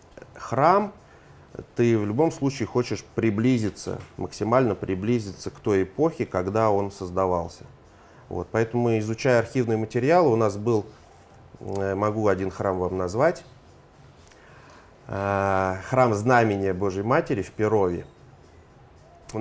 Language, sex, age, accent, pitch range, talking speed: Russian, male, 30-49, native, 100-125 Hz, 110 wpm